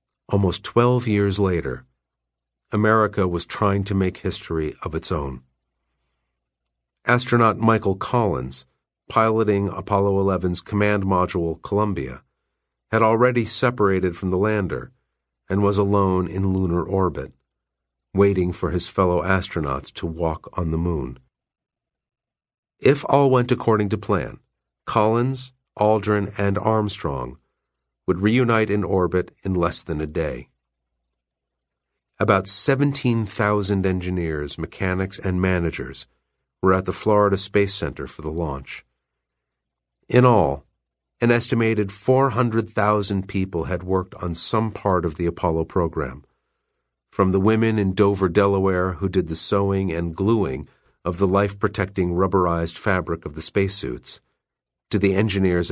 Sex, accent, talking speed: male, American, 125 wpm